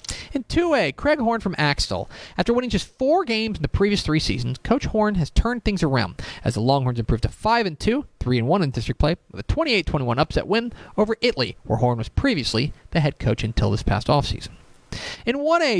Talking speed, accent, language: 210 wpm, American, English